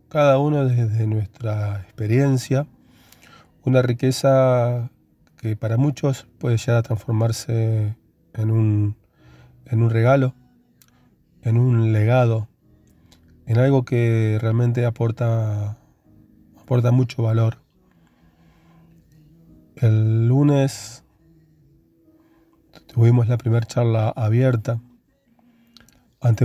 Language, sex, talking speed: Spanish, male, 85 wpm